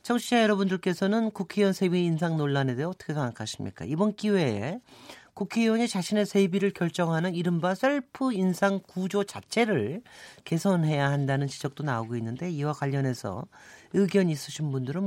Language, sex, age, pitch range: Korean, male, 40-59, 140-205 Hz